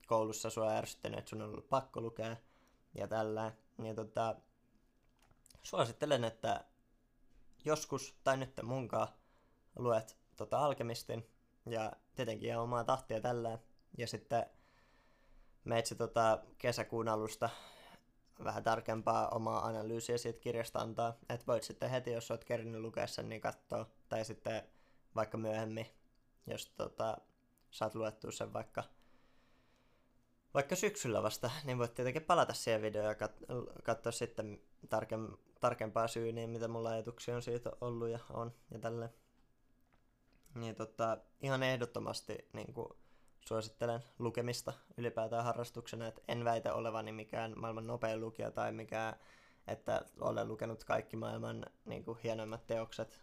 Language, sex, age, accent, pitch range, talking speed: Finnish, male, 20-39, native, 110-120 Hz, 125 wpm